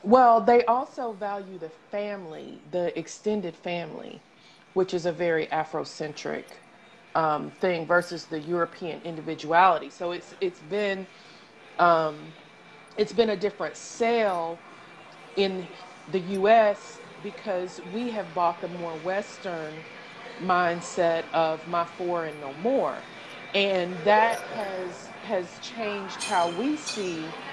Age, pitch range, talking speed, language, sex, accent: 30-49, 175-235 Hz, 120 wpm, English, female, American